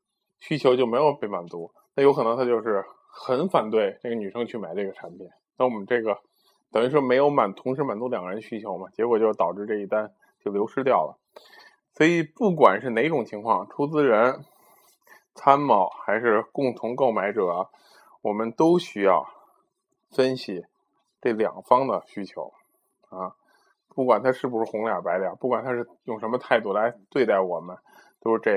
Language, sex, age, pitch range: Chinese, male, 20-39, 105-135 Hz